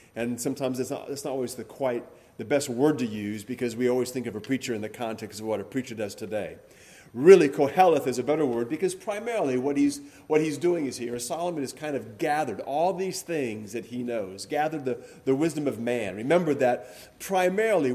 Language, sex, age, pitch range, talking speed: English, male, 40-59, 125-160 Hz, 215 wpm